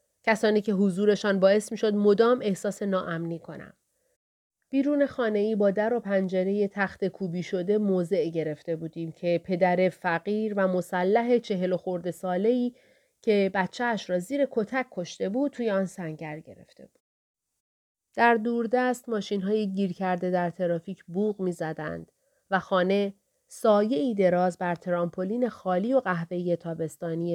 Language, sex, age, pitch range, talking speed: Persian, female, 30-49, 175-220 Hz, 145 wpm